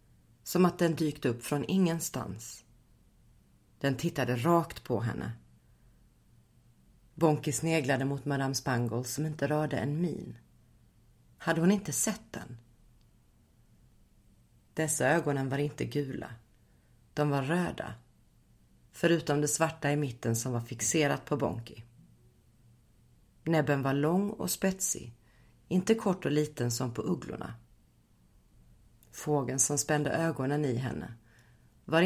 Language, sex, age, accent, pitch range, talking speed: English, female, 40-59, Swedish, 115-160 Hz, 120 wpm